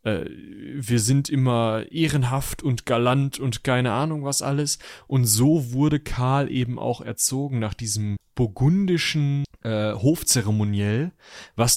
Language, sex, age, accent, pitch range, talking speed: German, male, 30-49, German, 115-150 Hz, 120 wpm